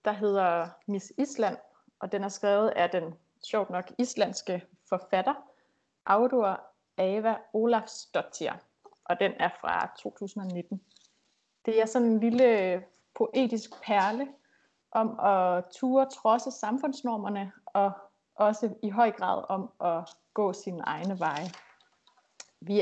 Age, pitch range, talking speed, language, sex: 30-49, 190-245 Hz, 125 wpm, Danish, female